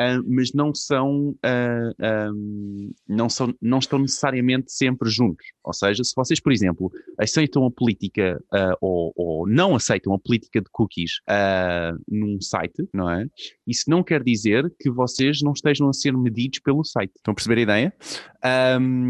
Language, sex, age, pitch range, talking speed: Portuguese, male, 20-39, 105-135 Hz, 175 wpm